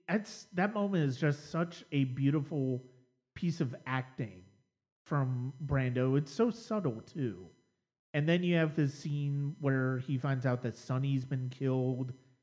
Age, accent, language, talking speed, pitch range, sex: 30-49, American, English, 150 wpm, 130-155 Hz, male